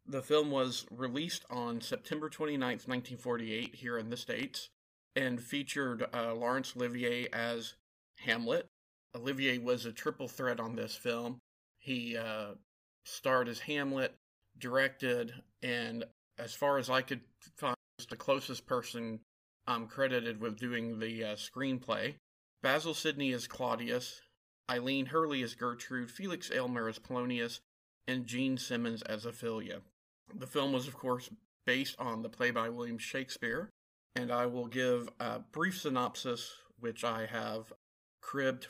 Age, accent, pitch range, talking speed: 40-59, American, 115-135 Hz, 140 wpm